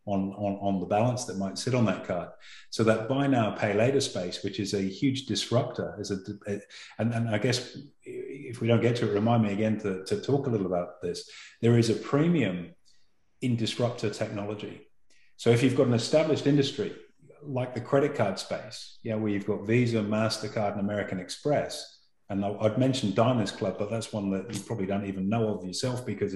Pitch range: 100-120 Hz